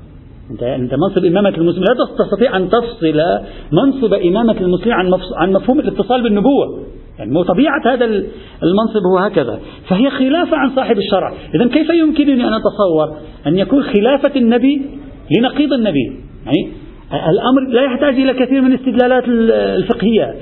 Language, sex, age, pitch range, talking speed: Arabic, male, 40-59, 150-250 Hz, 135 wpm